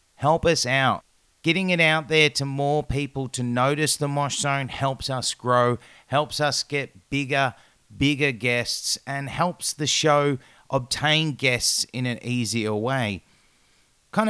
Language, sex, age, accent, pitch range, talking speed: English, male, 30-49, Australian, 120-145 Hz, 145 wpm